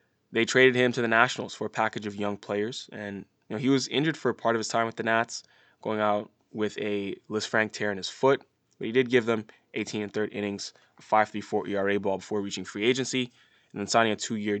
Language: English